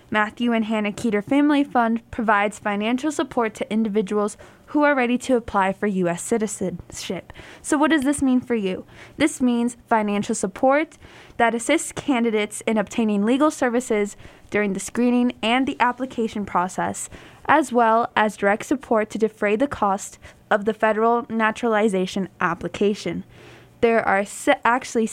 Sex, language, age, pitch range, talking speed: female, English, 10-29, 210-245 Hz, 145 wpm